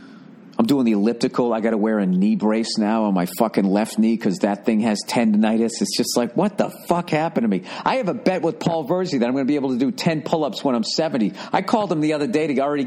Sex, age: male, 40-59